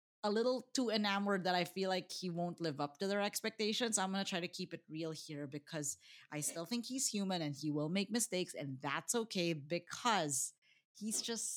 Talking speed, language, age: 205 wpm, English, 30-49